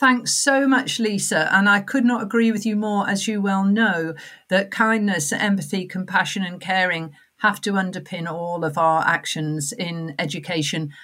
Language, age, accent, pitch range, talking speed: English, 50-69, British, 165-225 Hz, 170 wpm